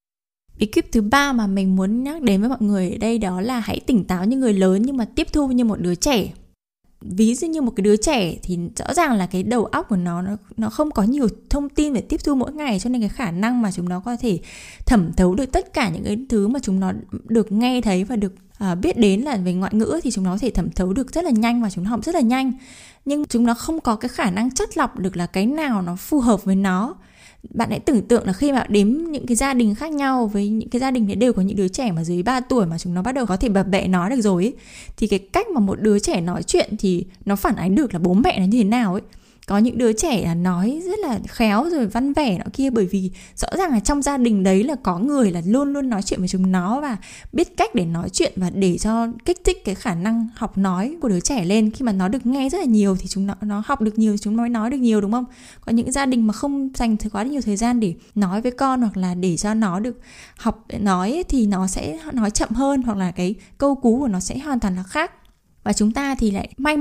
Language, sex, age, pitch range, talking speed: Vietnamese, female, 20-39, 195-255 Hz, 280 wpm